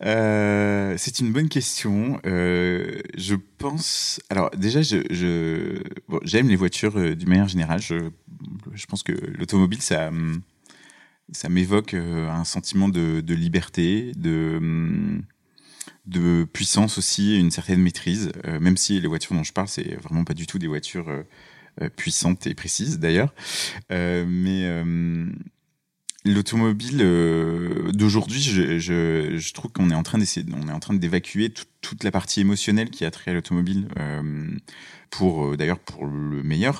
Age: 30-49